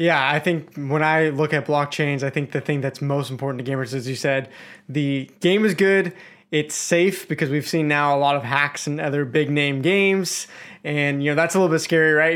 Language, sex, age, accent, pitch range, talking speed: English, male, 20-39, American, 145-170 Hz, 235 wpm